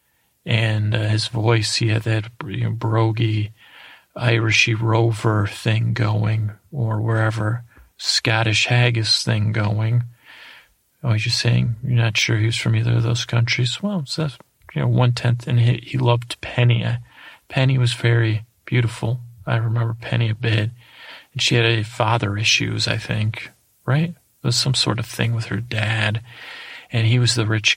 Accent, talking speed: American, 165 wpm